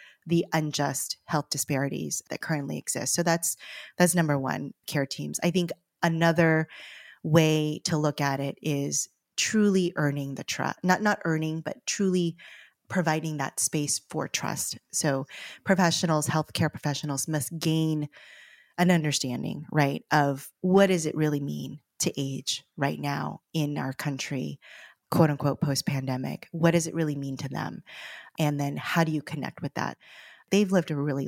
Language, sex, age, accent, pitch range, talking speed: English, female, 20-39, American, 140-170 Hz, 155 wpm